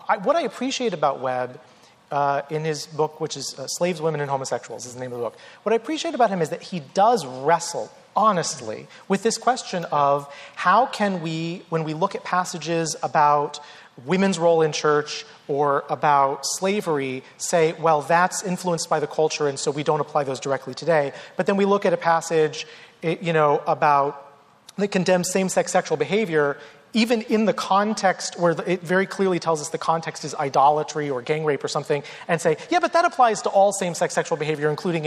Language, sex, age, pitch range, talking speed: English, male, 30-49, 145-195 Hz, 195 wpm